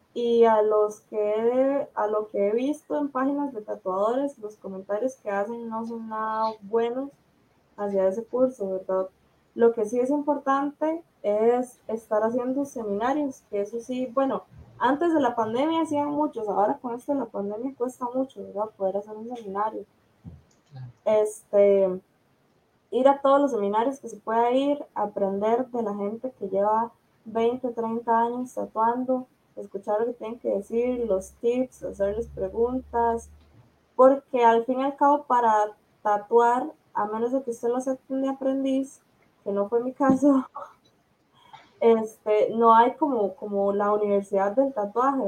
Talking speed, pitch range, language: 155 wpm, 205-255 Hz, Spanish